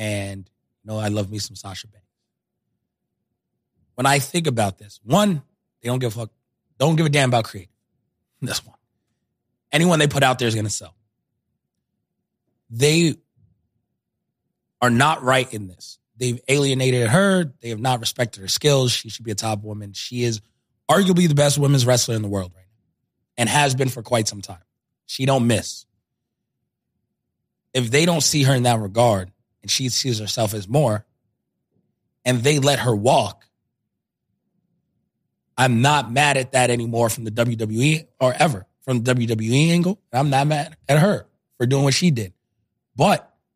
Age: 20-39